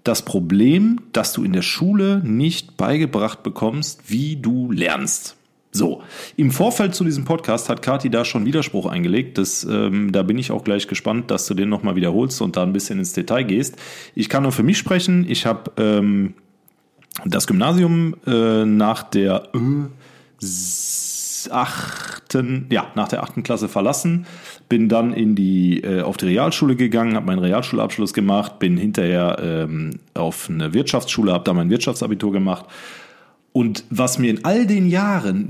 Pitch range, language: 105-155 Hz, German